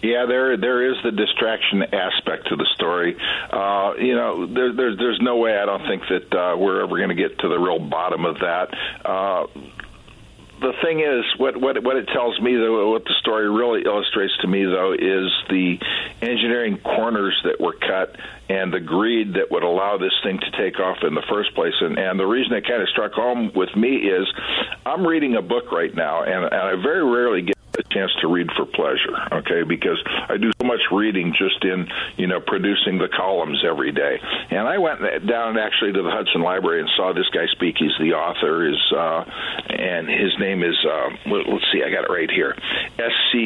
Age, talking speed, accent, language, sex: 50-69, 210 wpm, American, English, male